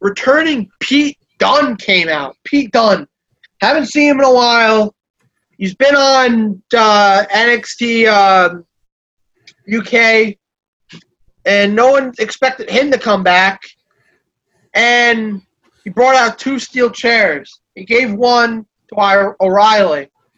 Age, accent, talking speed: 30-49, American, 120 wpm